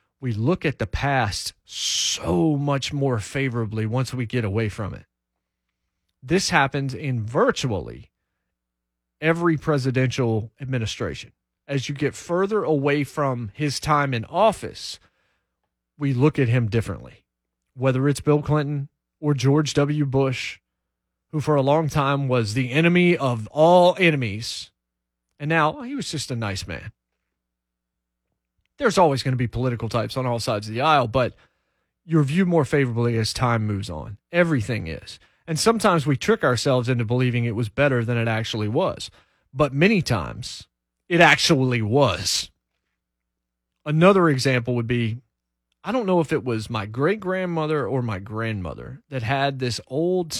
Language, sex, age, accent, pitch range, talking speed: English, male, 30-49, American, 105-150 Hz, 150 wpm